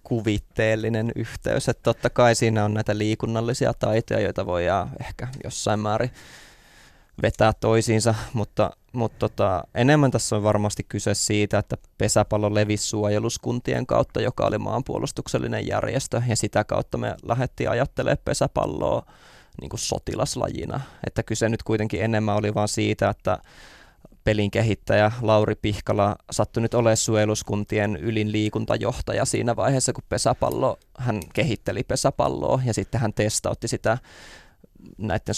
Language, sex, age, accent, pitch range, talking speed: Finnish, male, 20-39, native, 105-115 Hz, 125 wpm